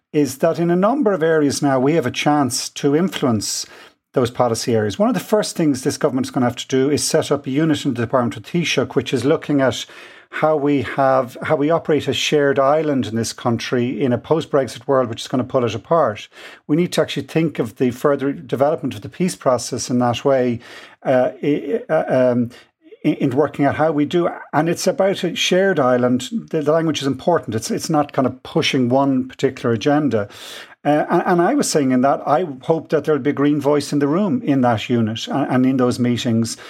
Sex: male